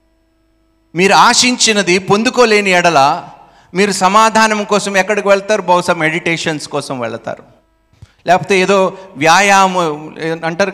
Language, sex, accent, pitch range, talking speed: Telugu, male, native, 120-190 Hz, 95 wpm